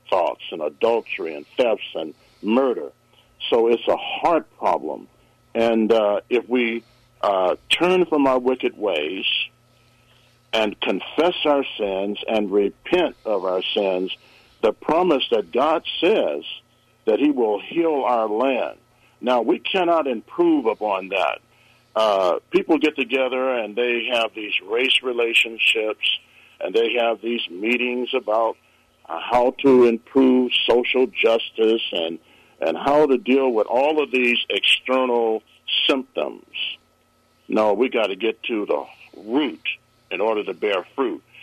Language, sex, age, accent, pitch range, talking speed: English, male, 60-79, American, 115-180 Hz, 135 wpm